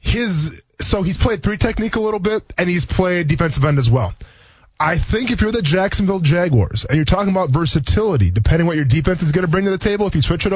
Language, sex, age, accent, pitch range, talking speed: English, male, 20-39, American, 130-160 Hz, 240 wpm